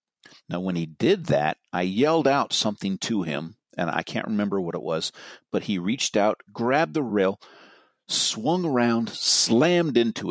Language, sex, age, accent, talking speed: English, male, 50-69, American, 170 wpm